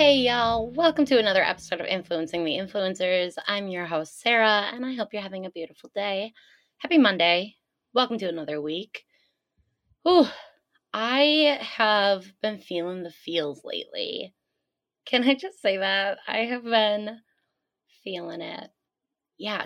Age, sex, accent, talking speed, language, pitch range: 20-39, female, American, 145 wpm, English, 175-225 Hz